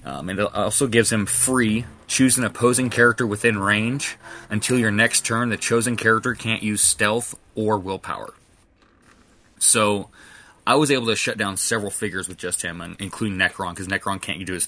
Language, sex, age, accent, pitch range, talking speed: English, male, 20-39, American, 100-115 Hz, 185 wpm